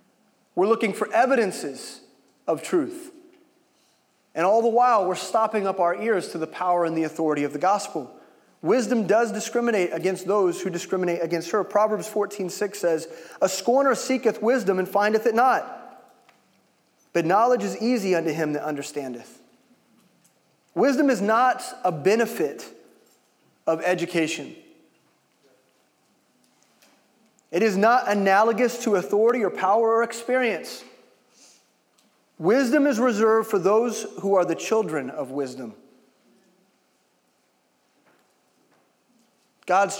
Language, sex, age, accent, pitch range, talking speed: English, male, 30-49, American, 180-235 Hz, 125 wpm